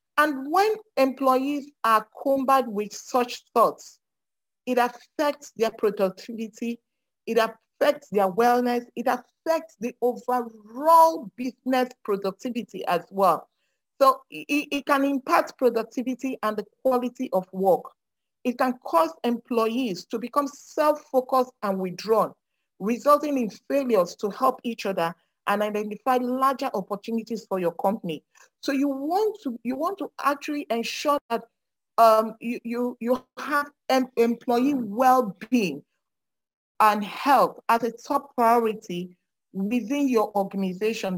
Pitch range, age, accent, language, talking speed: 220-270 Hz, 40-59, Nigerian, English, 120 wpm